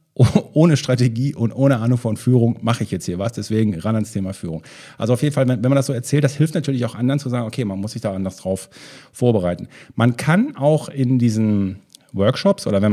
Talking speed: 225 wpm